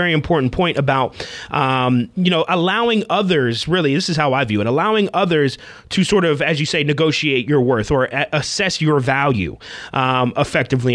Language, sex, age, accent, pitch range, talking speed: English, male, 30-49, American, 130-185 Hz, 185 wpm